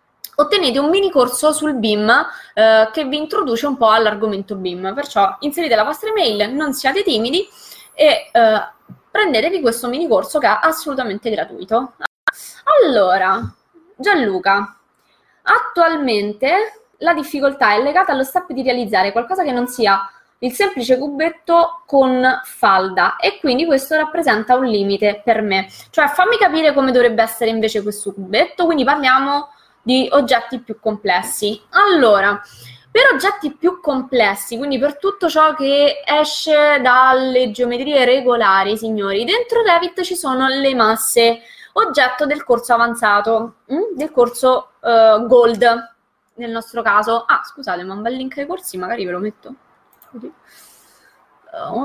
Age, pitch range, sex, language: 20-39, 220-310 Hz, female, Italian